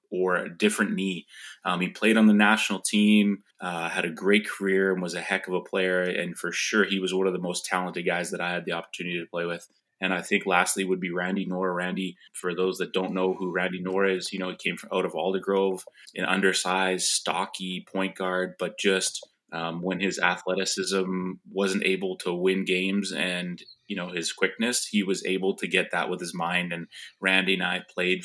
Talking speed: 220 wpm